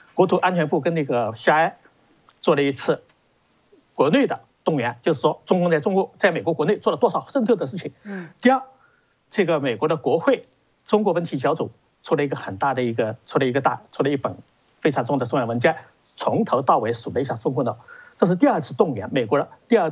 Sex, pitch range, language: male, 140-220 Hz, Chinese